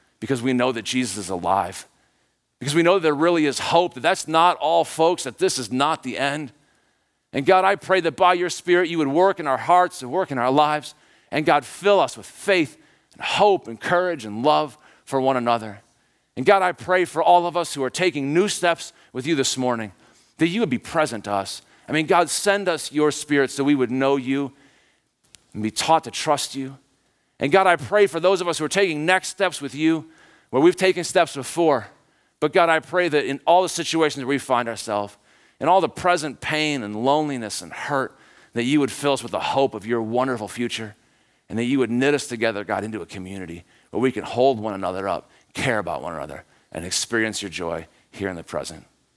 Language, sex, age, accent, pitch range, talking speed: English, male, 50-69, American, 125-170 Hz, 225 wpm